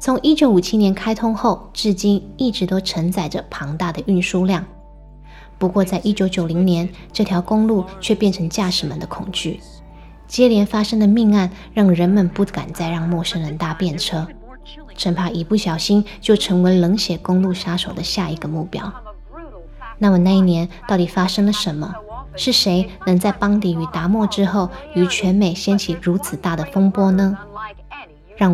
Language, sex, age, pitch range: Chinese, female, 20-39, 175-210 Hz